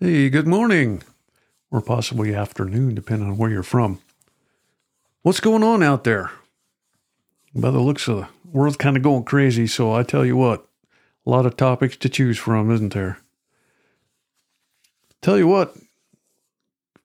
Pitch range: 120-145 Hz